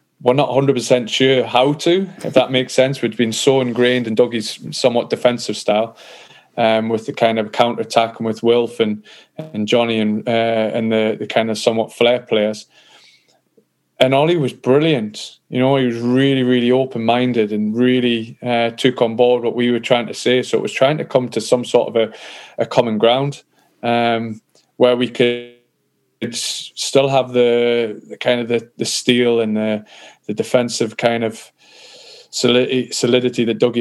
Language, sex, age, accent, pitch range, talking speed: English, male, 20-39, British, 115-125 Hz, 180 wpm